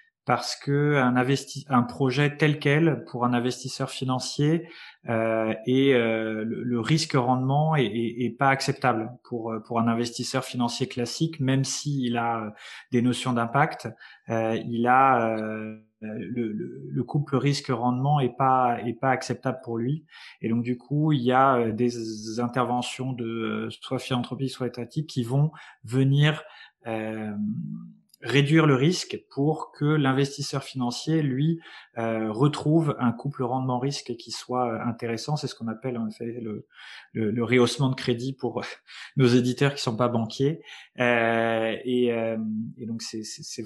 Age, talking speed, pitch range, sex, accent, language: 20-39, 160 wpm, 115-135 Hz, male, French, French